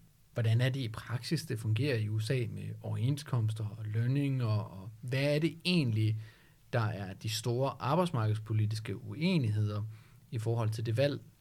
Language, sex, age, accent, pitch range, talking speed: Danish, male, 40-59, native, 115-150 Hz, 155 wpm